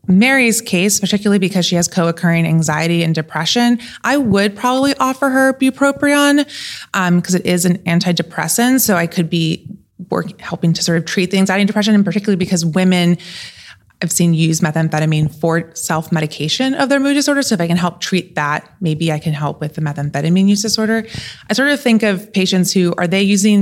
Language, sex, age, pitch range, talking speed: English, female, 20-39, 165-210 Hz, 190 wpm